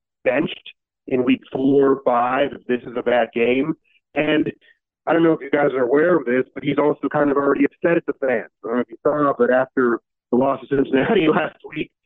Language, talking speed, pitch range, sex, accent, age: English, 235 wpm, 125-165 Hz, male, American, 40-59